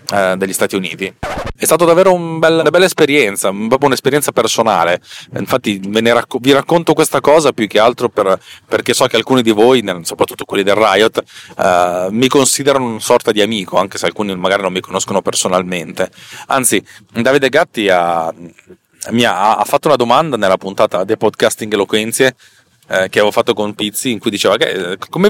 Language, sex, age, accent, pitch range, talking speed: Italian, male, 30-49, native, 95-115 Hz, 175 wpm